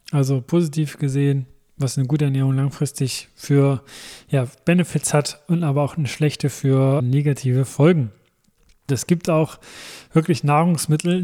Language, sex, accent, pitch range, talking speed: German, male, German, 140-165 Hz, 130 wpm